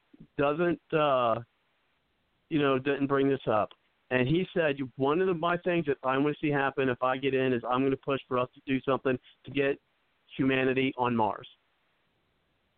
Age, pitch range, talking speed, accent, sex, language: 50-69, 125-155 Hz, 195 wpm, American, male, English